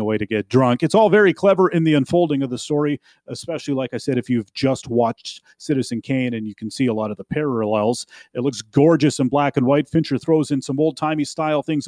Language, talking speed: English, 245 wpm